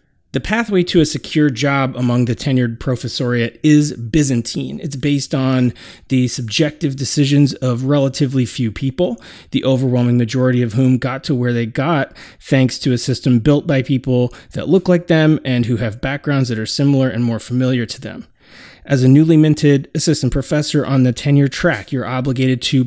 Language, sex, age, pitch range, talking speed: English, male, 30-49, 125-155 Hz, 180 wpm